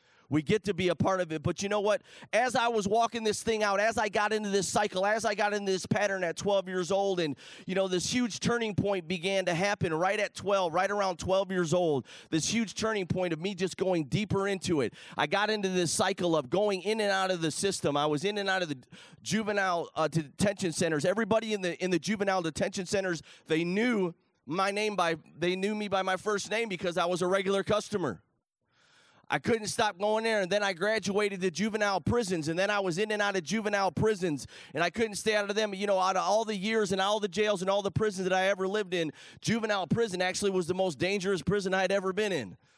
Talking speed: 245 wpm